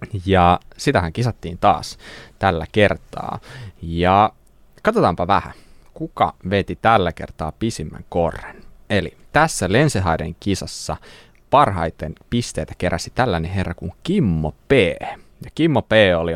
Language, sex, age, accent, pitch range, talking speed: Finnish, male, 20-39, native, 85-115 Hz, 115 wpm